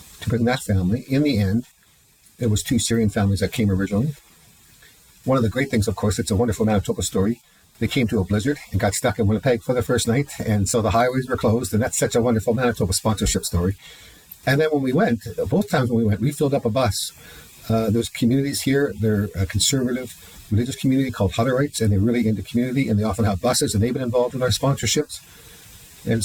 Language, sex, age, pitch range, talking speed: English, male, 50-69, 100-125 Hz, 225 wpm